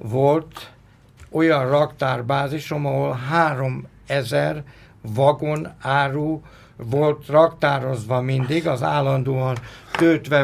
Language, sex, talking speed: Hungarian, male, 80 wpm